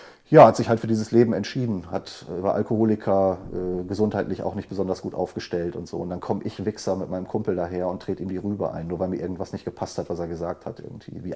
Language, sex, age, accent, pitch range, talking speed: German, male, 40-59, German, 90-110 Hz, 255 wpm